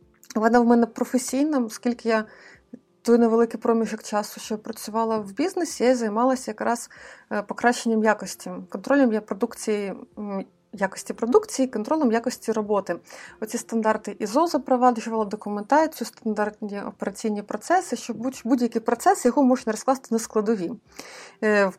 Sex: female